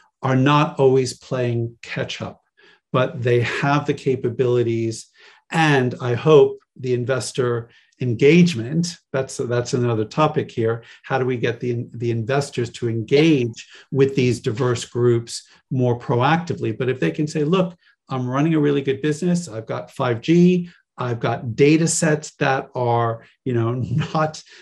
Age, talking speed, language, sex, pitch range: 50-69, 150 wpm, English, male, 120-145 Hz